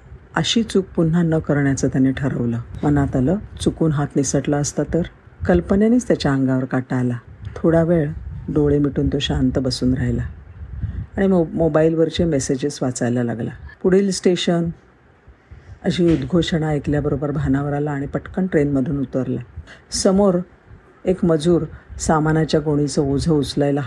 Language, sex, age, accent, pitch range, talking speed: Marathi, female, 50-69, native, 130-170 Hz, 130 wpm